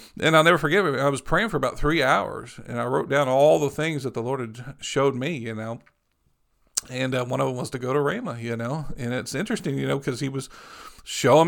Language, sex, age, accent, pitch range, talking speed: English, male, 50-69, American, 125-155 Hz, 245 wpm